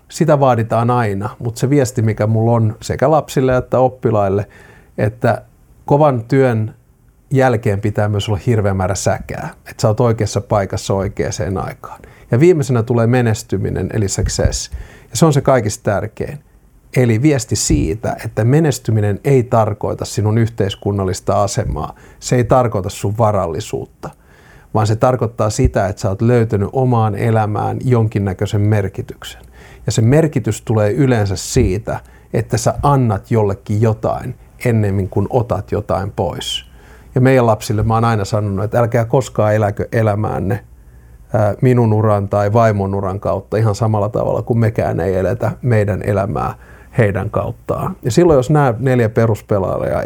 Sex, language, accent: male, English, Finnish